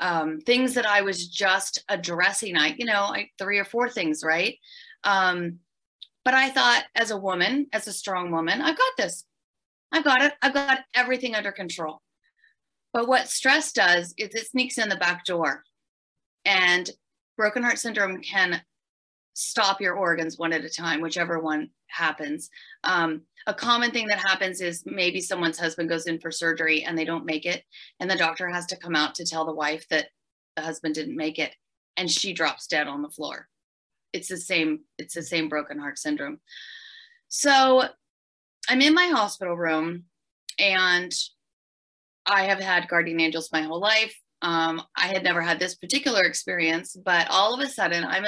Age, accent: 30-49, American